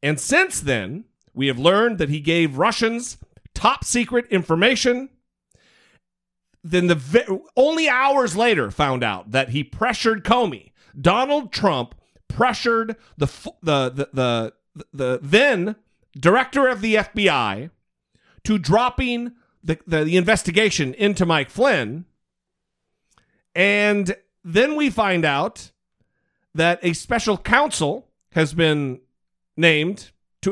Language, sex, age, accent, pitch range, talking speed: English, male, 40-59, American, 135-215 Hz, 120 wpm